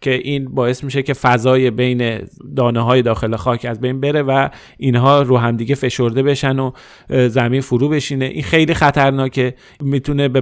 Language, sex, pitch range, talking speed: Persian, male, 120-140 Hz, 180 wpm